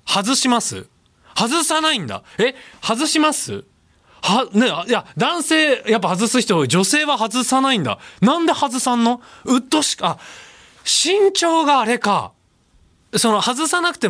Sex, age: male, 20-39